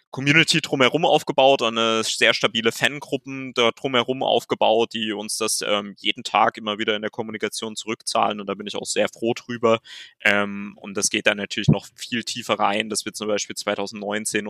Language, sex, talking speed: German, male, 180 wpm